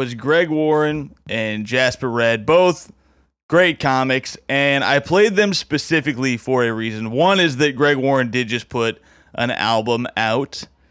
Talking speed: 155 wpm